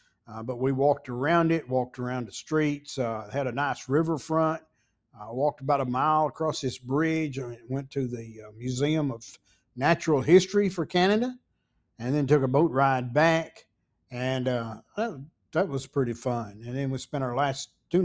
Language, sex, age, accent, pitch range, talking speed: English, male, 50-69, American, 120-145 Hz, 185 wpm